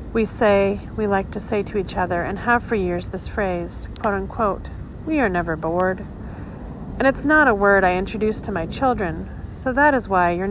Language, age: English, 40-59